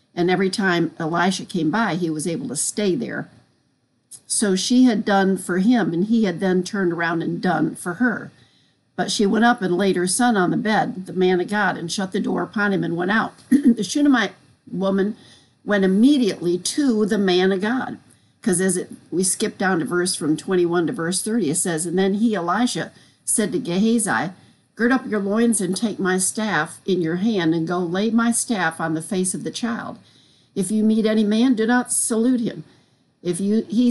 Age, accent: 50-69, American